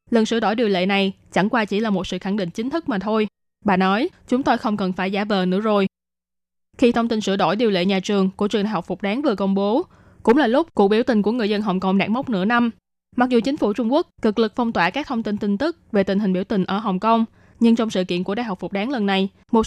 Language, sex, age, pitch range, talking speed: Vietnamese, female, 20-39, 195-240 Hz, 295 wpm